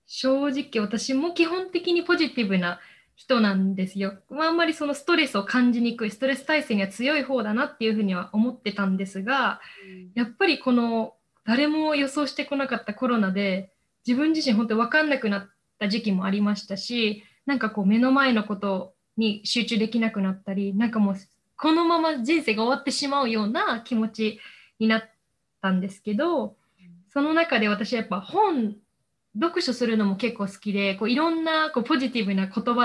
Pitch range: 200-265 Hz